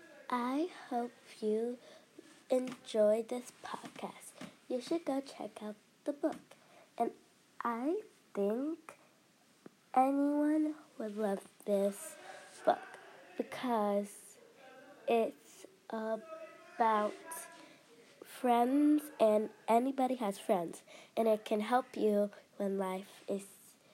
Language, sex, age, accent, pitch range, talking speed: English, female, 20-39, American, 210-290 Hz, 95 wpm